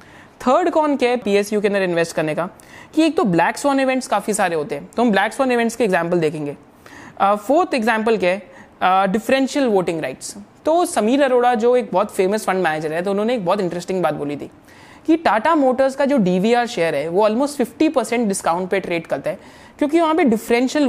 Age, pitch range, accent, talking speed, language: 20-39, 190-270 Hz, native, 205 wpm, Hindi